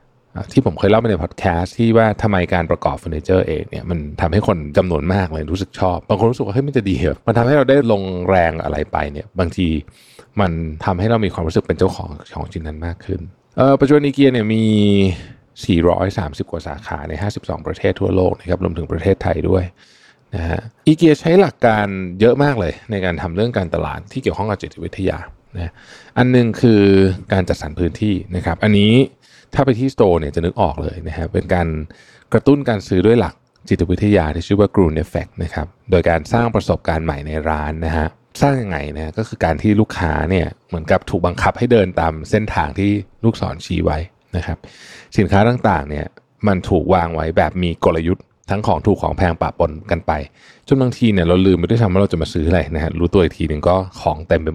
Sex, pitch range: male, 85-110 Hz